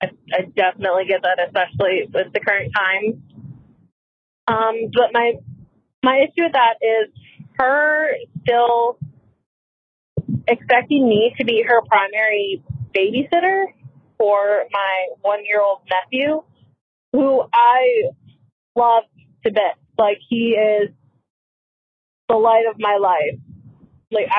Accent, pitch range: American, 200-270 Hz